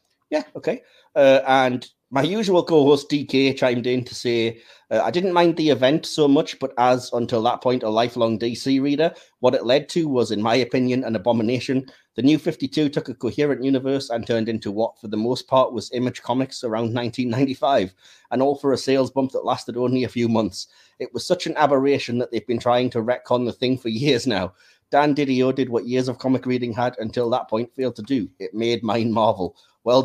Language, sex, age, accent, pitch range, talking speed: English, male, 30-49, British, 120-135 Hz, 215 wpm